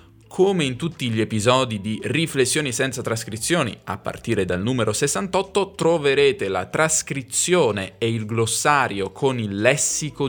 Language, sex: Italian, male